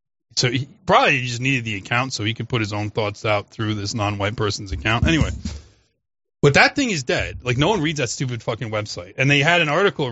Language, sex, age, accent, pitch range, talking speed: English, male, 30-49, American, 115-155 Hz, 230 wpm